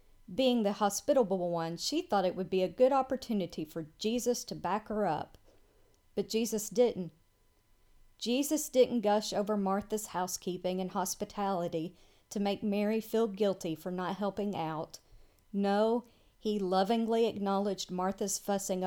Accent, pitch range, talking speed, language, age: American, 165-215 Hz, 140 wpm, English, 40-59